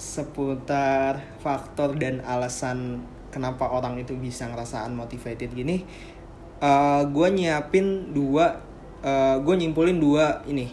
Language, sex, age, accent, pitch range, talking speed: Indonesian, male, 20-39, native, 135-160 Hz, 105 wpm